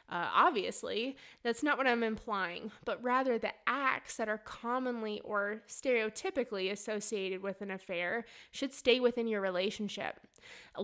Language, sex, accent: English, female, American